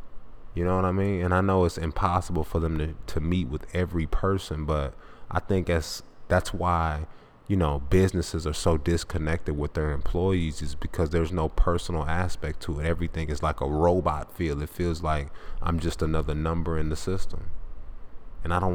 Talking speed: 190 wpm